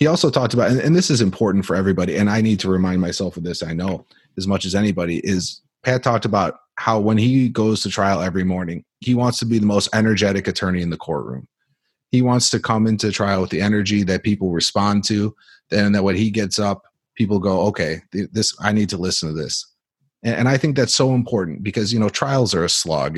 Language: English